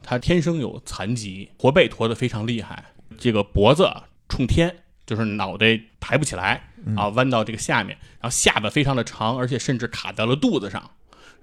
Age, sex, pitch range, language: 20-39, male, 105-160 Hz, Chinese